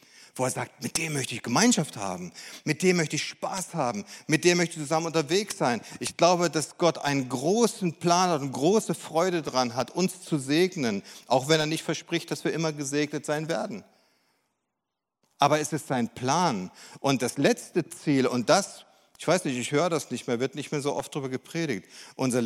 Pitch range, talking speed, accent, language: 140-175 Hz, 205 wpm, German, German